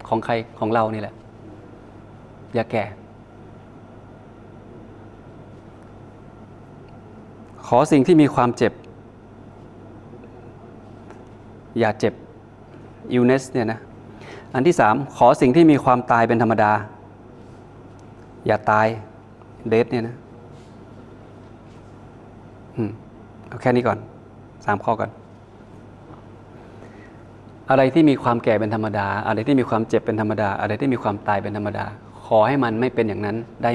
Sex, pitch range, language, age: male, 110-120 Hz, Thai, 20-39